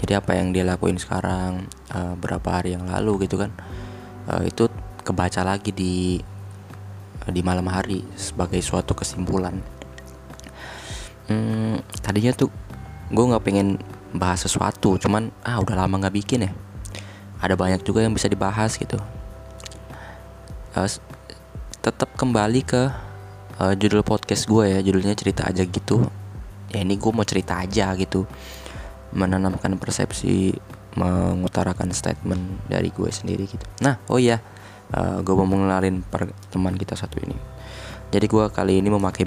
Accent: native